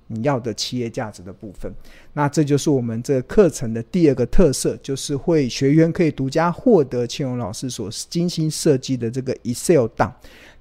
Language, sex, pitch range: Chinese, male, 125-170 Hz